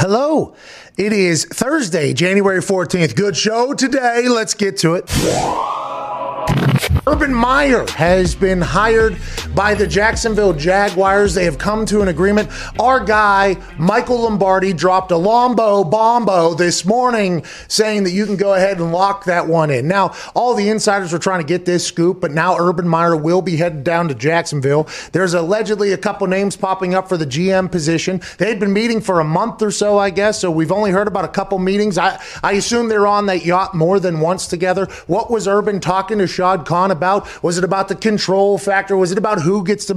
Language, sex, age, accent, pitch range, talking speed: English, male, 30-49, American, 180-210 Hz, 195 wpm